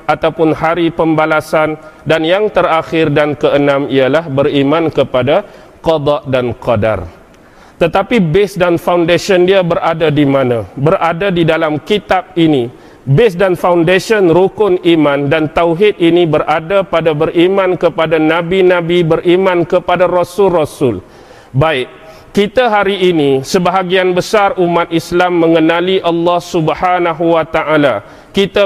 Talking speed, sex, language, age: 120 wpm, male, English, 40-59